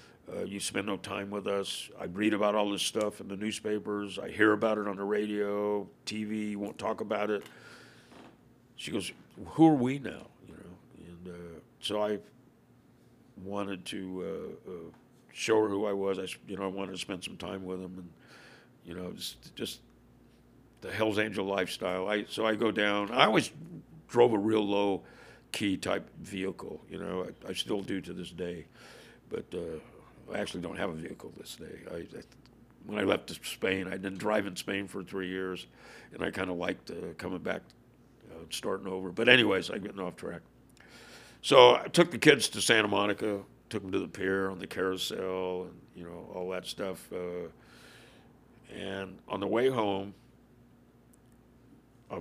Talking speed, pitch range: 190 wpm, 95-105 Hz